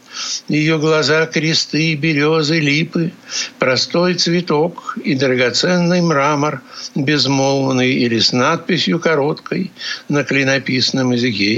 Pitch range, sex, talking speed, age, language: 130-160 Hz, male, 95 wpm, 60-79, Russian